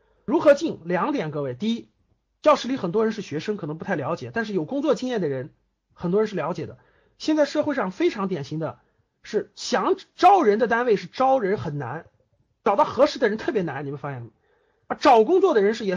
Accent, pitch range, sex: native, 190-315 Hz, male